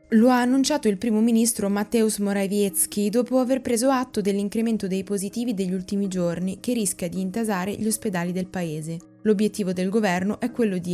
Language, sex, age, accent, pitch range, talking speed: Italian, female, 20-39, native, 180-225 Hz, 175 wpm